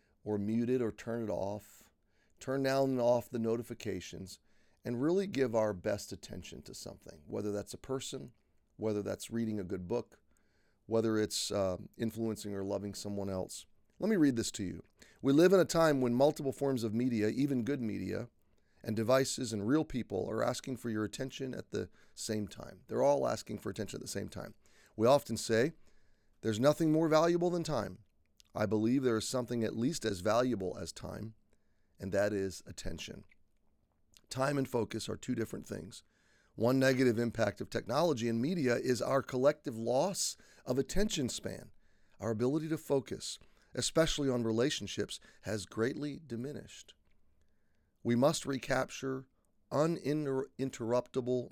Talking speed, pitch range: 165 wpm, 105-130 Hz